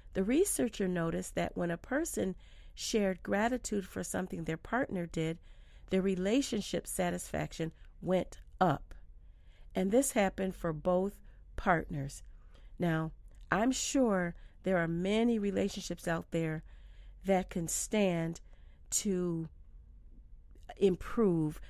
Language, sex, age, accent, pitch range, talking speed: English, female, 40-59, American, 165-210 Hz, 110 wpm